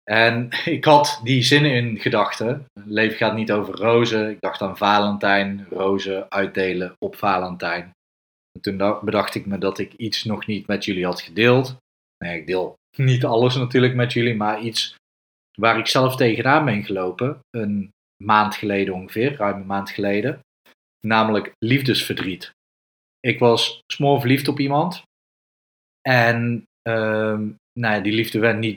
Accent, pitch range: Dutch, 100-125 Hz